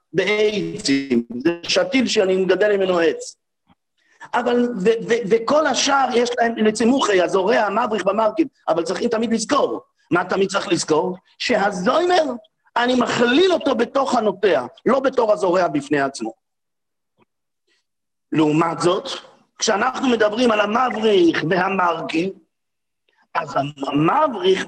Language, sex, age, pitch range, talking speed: English, male, 50-69, 190-270 Hz, 110 wpm